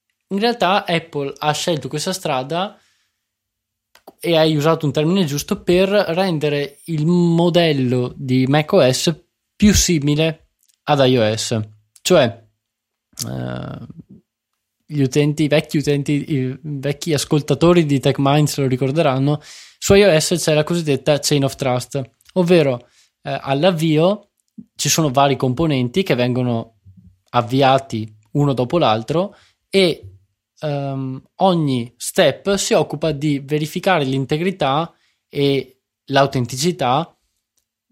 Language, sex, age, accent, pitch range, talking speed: Italian, male, 20-39, native, 125-160 Hz, 110 wpm